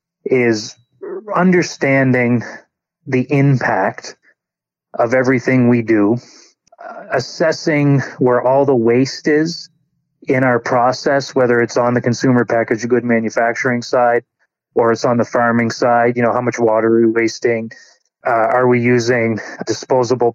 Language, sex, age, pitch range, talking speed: English, male, 30-49, 120-135 Hz, 135 wpm